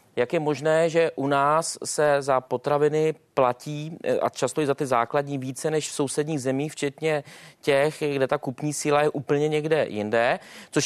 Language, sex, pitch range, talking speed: Czech, male, 140-165 Hz, 175 wpm